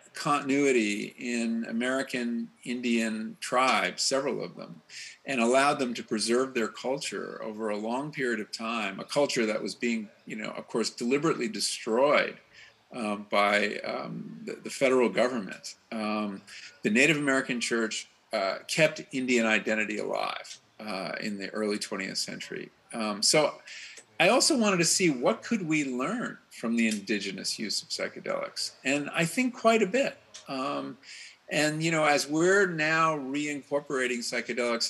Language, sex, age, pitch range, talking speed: English, male, 50-69, 115-150 Hz, 150 wpm